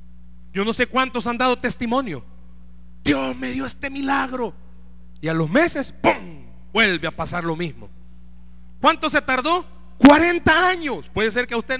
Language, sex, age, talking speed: Spanish, male, 40-59, 165 wpm